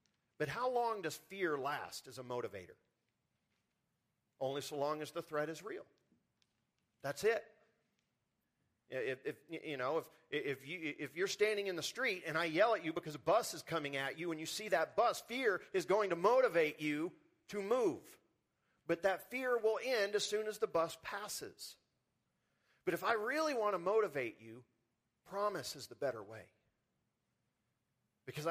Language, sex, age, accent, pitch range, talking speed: English, male, 40-59, American, 145-220 Hz, 160 wpm